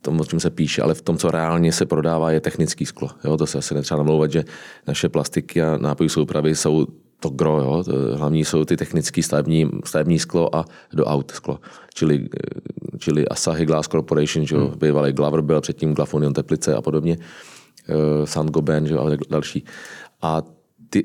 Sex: male